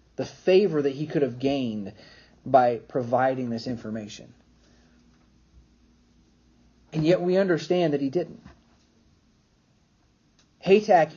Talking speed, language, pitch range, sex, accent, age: 100 wpm, English, 130-170 Hz, male, American, 40-59